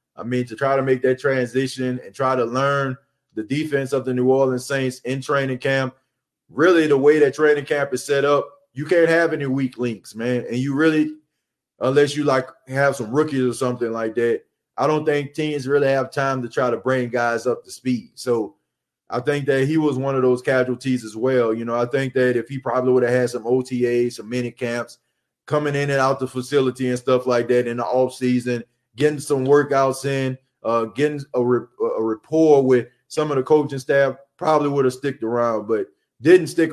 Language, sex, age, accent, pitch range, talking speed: English, male, 20-39, American, 125-140 Hz, 215 wpm